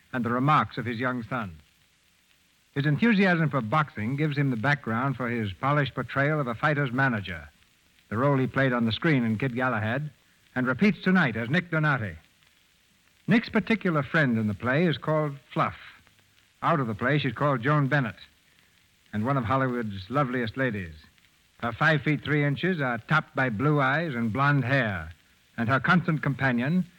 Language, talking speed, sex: English, 175 wpm, male